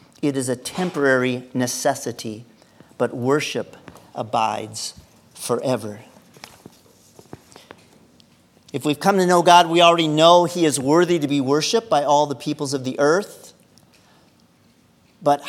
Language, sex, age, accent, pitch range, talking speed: English, male, 50-69, American, 130-165 Hz, 125 wpm